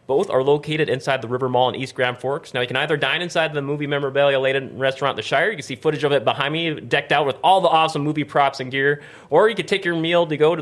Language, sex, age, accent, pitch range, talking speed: English, male, 30-49, American, 125-160 Hz, 290 wpm